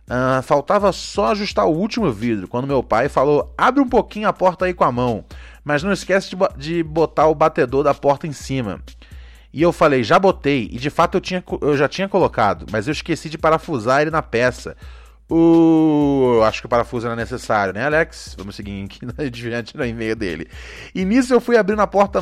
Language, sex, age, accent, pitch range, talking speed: Portuguese, male, 20-39, Brazilian, 140-200 Hz, 210 wpm